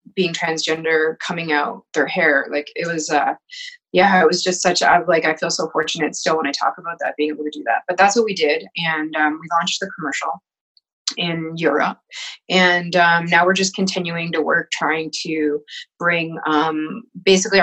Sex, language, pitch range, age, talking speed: female, English, 160-185 Hz, 20-39, 195 wpm